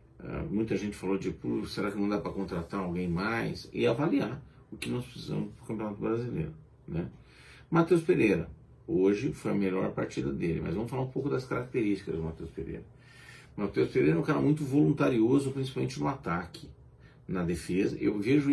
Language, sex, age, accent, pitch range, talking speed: Portuguese, male, 40-59, Brazilian, 80-125 Hz, 180 wpm